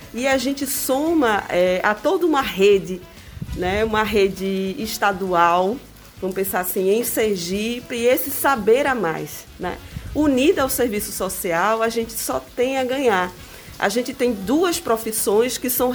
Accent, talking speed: Brazilian, 150 wpm